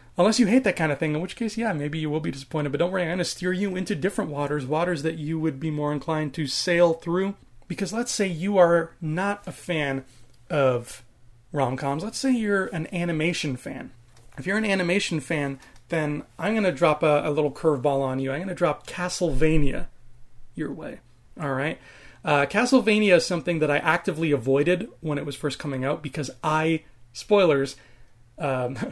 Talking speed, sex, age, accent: 200 wpm, male, 30-49, American